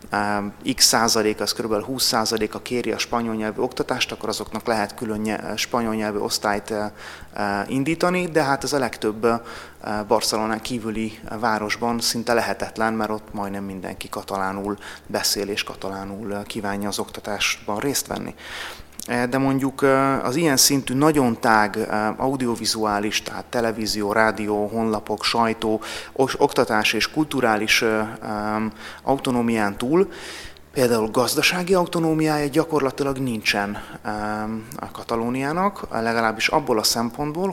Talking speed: 115 wpm